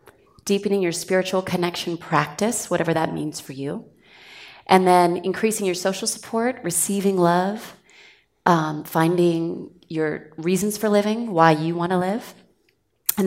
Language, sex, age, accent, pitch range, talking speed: English, female, 30-49, American, 160-185 Hz, 135 wpm